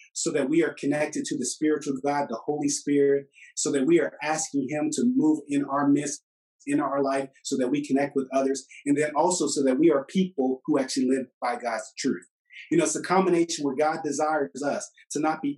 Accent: American